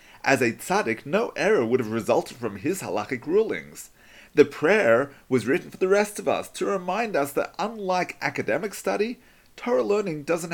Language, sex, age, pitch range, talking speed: English, male, 40-59, 125-190 Hz, 175 wpm